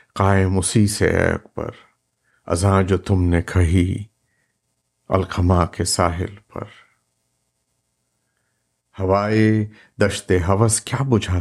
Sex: male